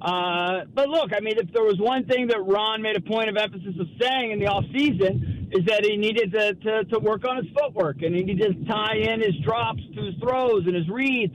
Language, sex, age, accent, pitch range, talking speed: English, male, 50-69, American, 185-260 Hz, 250 wpm